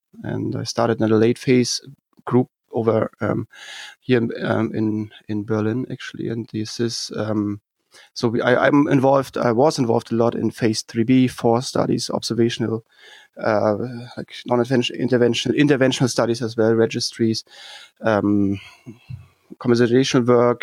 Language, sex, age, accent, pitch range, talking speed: English, male, 30-49, German, 115-130 Hz, 140 wpm